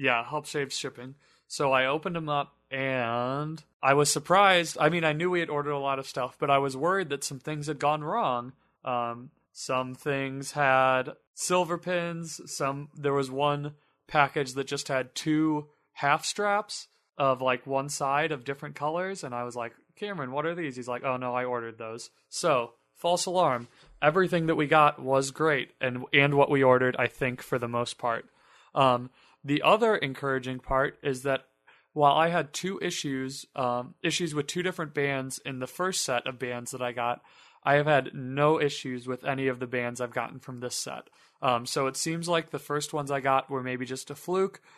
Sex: male